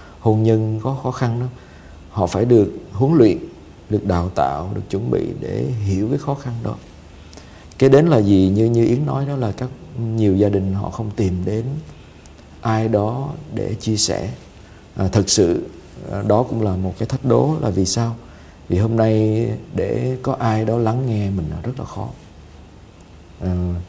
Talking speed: 185 wpm